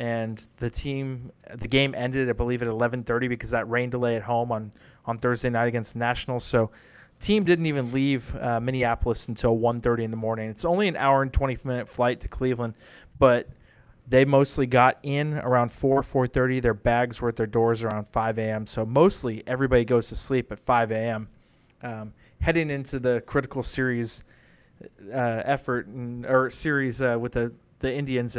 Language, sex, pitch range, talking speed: English, male, 115-130 Hz, 185 wpm